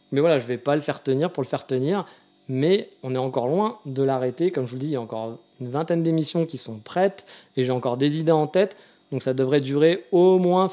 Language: French